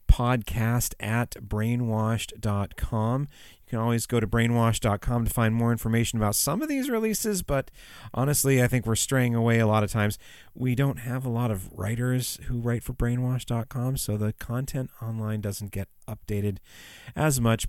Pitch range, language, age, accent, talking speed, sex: 95-120 Hz, German, 30-49, American, 165 wpm, male